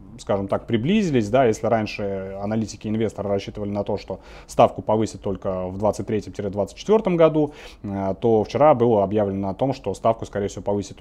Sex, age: male, 30-49